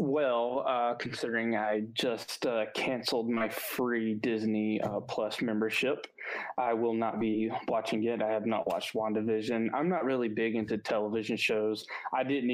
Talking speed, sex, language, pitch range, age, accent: 160 wpm, male, English, 110-125 Hz, 20-39, American